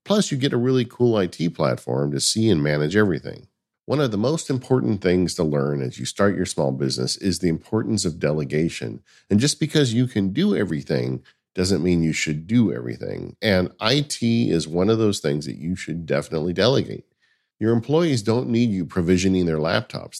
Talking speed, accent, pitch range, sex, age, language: 195 wpm, American, 80-125 Hz, male, 50-69, English